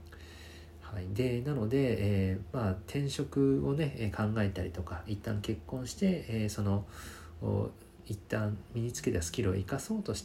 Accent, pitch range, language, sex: native, 95-130 Hz, Japanese, male